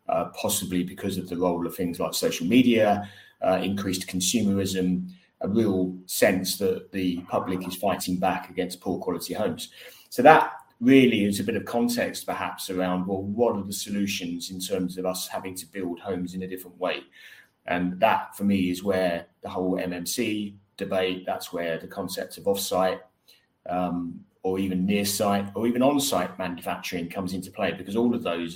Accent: British